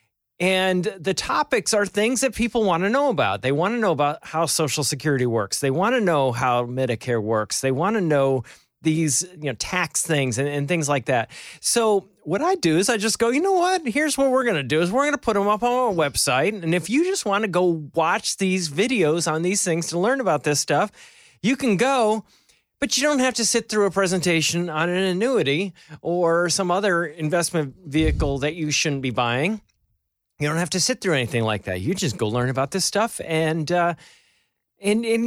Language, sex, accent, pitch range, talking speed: English, male, American, 150-215 Hz, 225 wpm